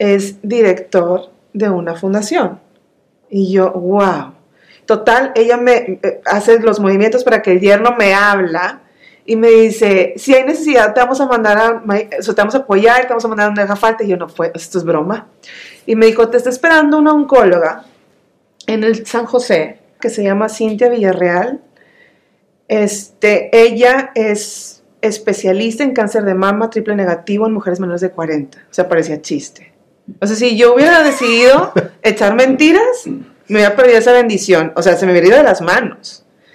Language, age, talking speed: English, 30-49, 175 wpm